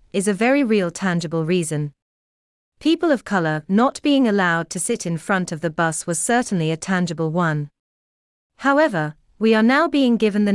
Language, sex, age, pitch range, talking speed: English, female, 30-49, 160-225 Hz, 175 wpm